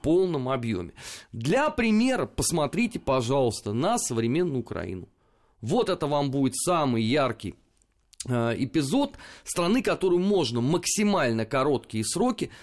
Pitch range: 120-185 Hz